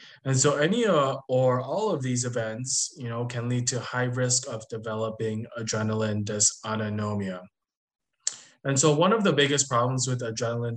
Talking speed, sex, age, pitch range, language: 160 wpm, male, 20-39, 110-135 Hz, English